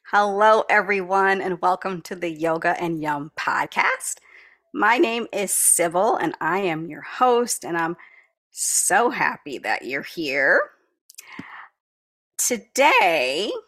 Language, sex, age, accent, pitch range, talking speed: English, female, 30-49, American, 175-215 Hz, 120 wpm